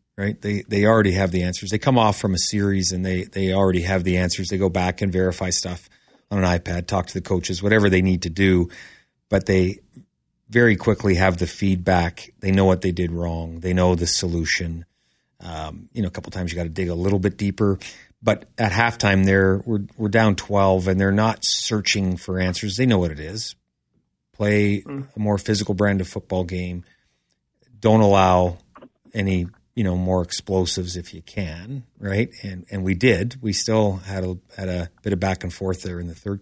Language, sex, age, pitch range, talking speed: English, male, 30-49, 90-110 Hz, 210 wpm